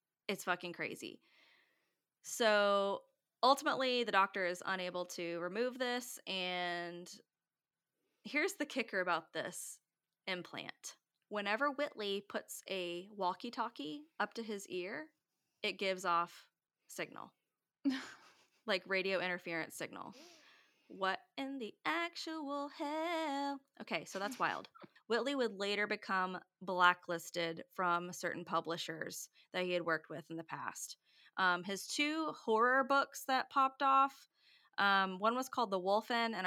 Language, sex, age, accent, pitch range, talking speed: English, female, 20-39, American, 180-235 Hz, 125 wpm